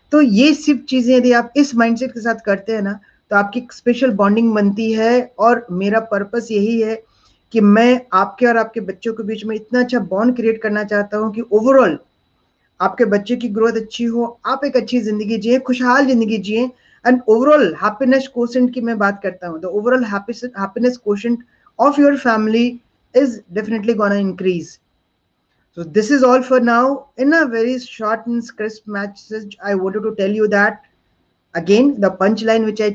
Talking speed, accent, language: 170 wpm, native, Hindi